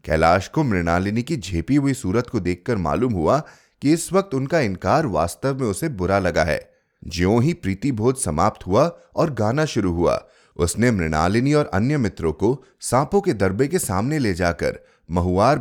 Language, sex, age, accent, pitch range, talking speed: Hindi, male, 30-49, native, 85-130 Hz, 175 wpm